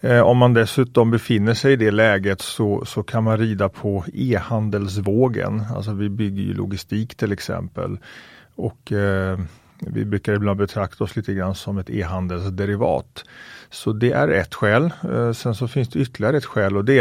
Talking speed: 175 wpm